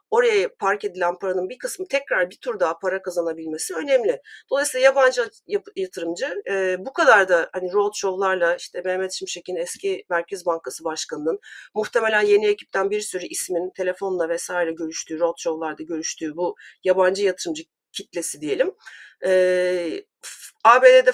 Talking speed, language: 135 wpm, Turkish